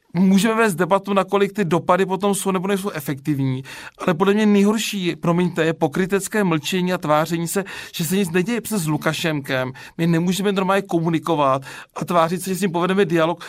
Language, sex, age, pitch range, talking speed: Czech, male, 40-59, 160-195 Hz, 185 wpm